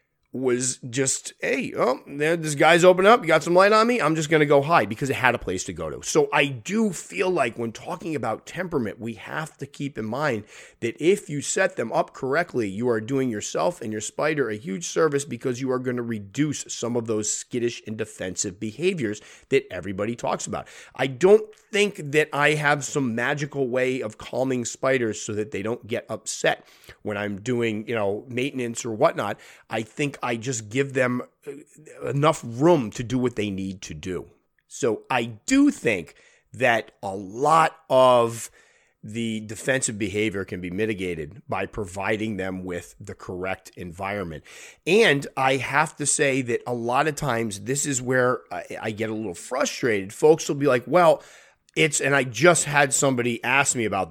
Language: English